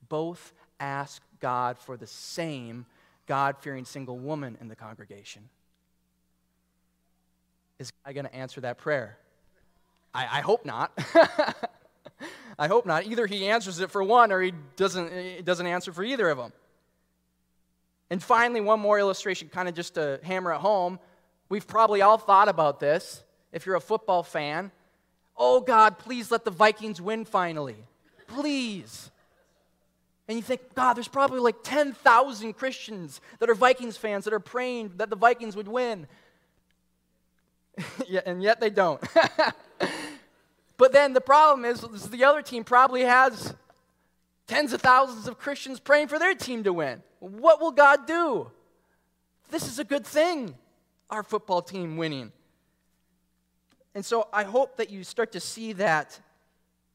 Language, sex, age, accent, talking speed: English, male, 20-39, American, 150 wpm